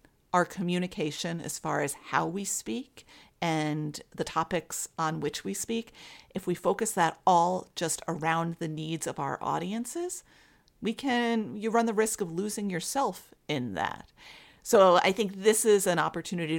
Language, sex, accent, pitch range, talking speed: English, female, American, 155-190 Hz, 165 wpm